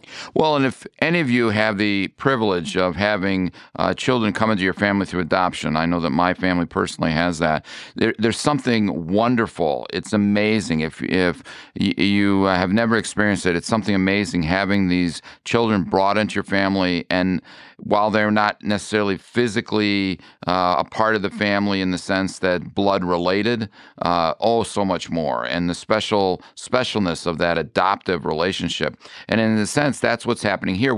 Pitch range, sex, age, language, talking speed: 90-105 Hz, male, 50-69, English, 170 wpm